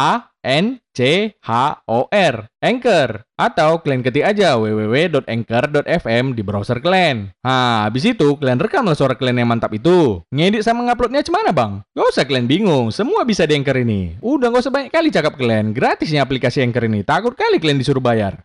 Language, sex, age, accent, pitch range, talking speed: Indonesian, male, 20-39, native, 125-205 Hz, 170 wpm